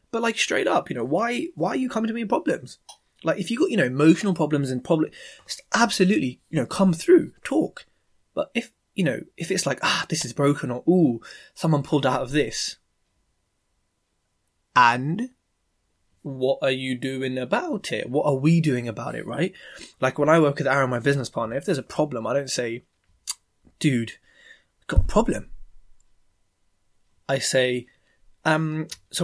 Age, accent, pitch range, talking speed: 20-39, British, 125-170 Hz, 185 wpm